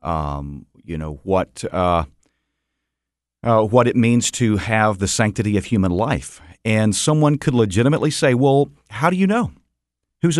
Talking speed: 155 wpm